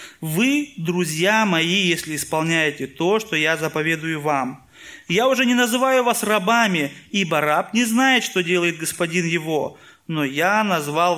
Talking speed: 145 wpm